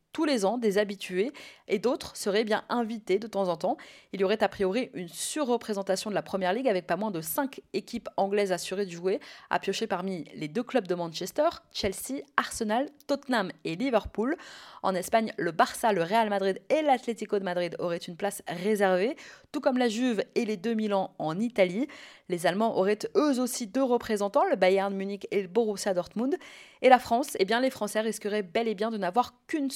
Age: 20-39